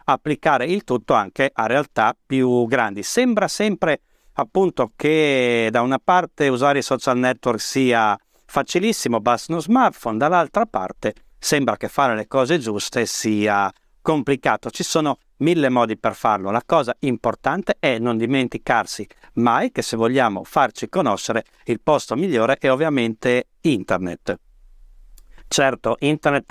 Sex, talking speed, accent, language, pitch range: male, 135 wpm, native, Italian, 115-155 Hz